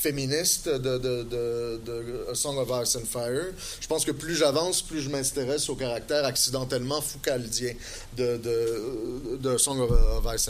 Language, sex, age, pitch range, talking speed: French, male, 30-49, 125-150 Hz, 155 wpm